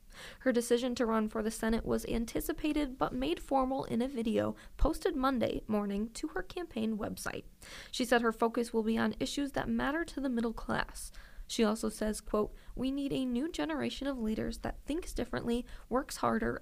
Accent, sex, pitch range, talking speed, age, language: American, female, 225-265 Hz, 190 wpm, 20-39, English